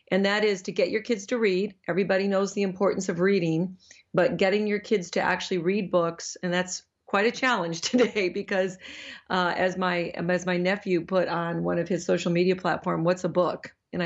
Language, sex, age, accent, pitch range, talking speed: English, female, 40-59, American, 175-200 Hz, 205 wpm